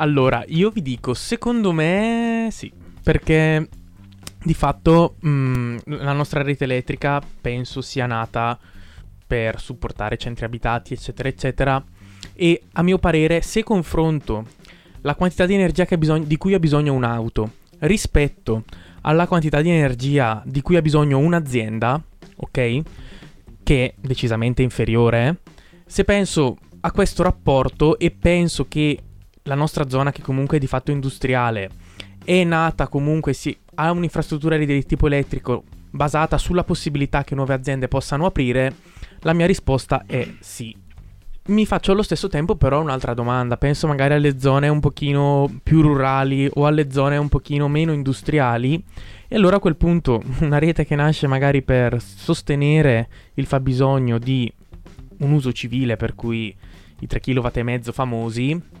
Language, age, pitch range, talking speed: Italian, 20-39, 120-160 Hz, 145 wpm